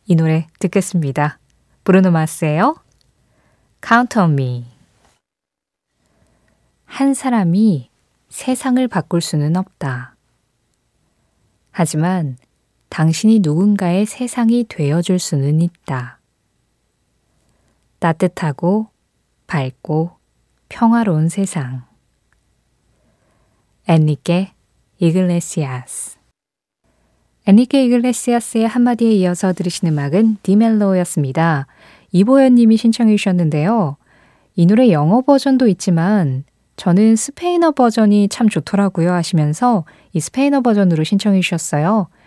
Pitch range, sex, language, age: 160-220 Hz, female, Korean, 20-39